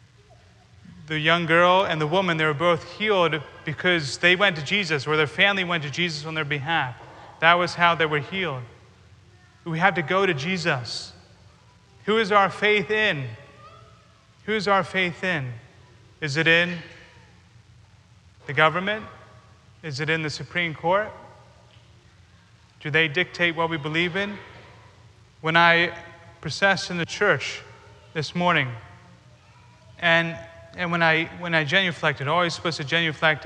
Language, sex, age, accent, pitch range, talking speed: English, male, 30-49, American, 120-175 Hz, 150 wpm